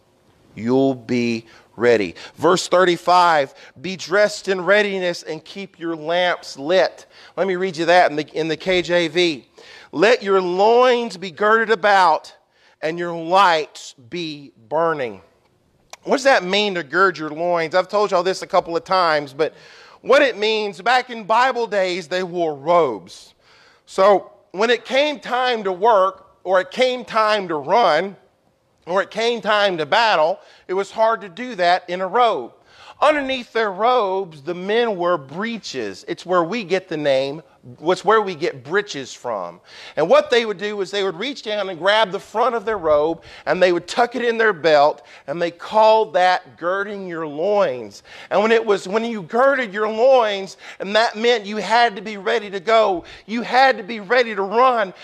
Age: 40-59